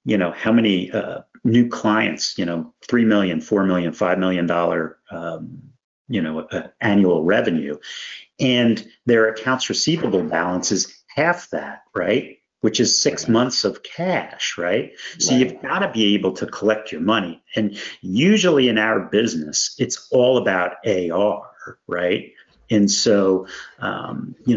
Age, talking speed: 50-69, 150 wpm